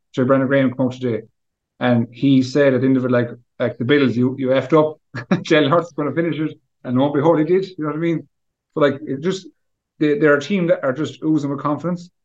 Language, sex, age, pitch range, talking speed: English, male, 30-49, 125-145 Hz, 260 wpm